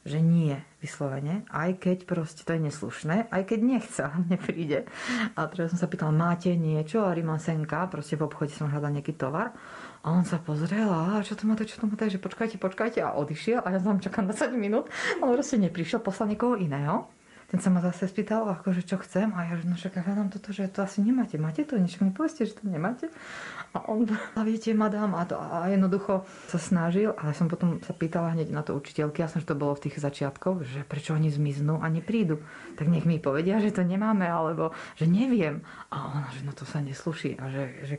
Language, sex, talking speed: Slovak, female, 220 wpm